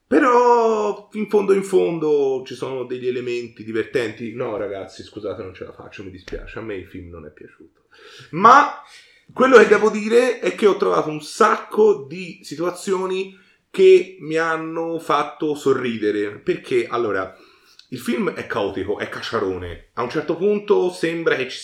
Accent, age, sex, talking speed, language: native, 30-49, male, 165 wpm, Italian